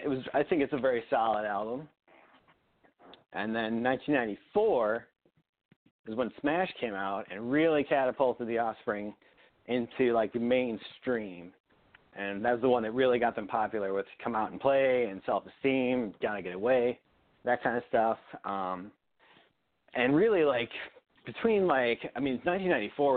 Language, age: English, 30-49